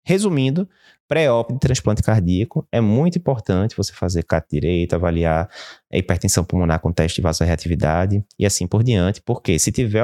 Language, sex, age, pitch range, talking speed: Portuguese, male, 20-39, 90-125 Hz, 160 wpm